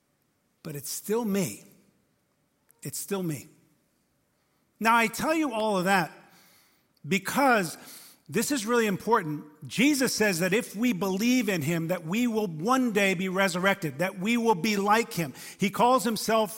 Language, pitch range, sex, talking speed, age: English, 170-220 Hz, male, 155 wpm, 50-69